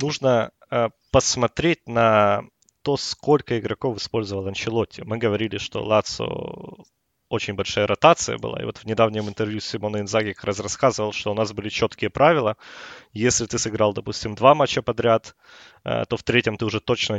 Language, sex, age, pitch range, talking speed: Russian, male, 20-39, 105-130 Hz, 160 wpm